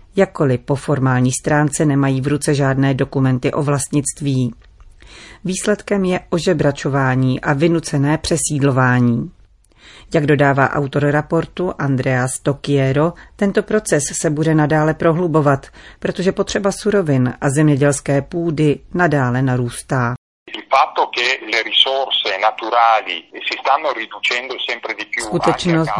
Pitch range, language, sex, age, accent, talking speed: 135-165 Hz, Czech, female, 40-59, native, 90 wpm